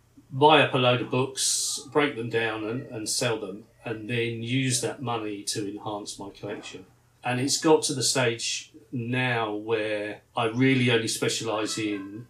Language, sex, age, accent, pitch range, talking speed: English, male, 40-59, British, 115-135 Hz, 170 wpm